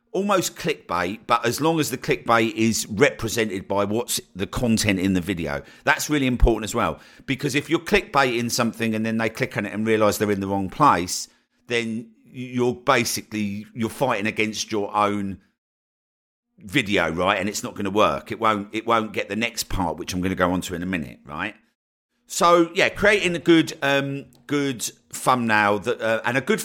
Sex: male